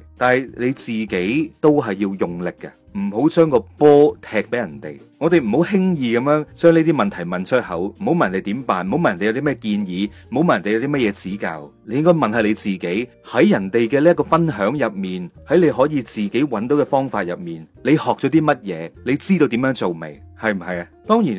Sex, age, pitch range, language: male, 30-49, 105-155 Hz, Chinese